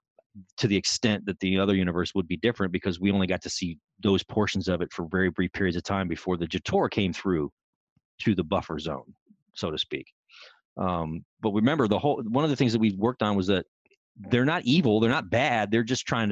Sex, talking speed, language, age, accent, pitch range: male, 230 wpm, English, 30-49, American, 90-110 Hz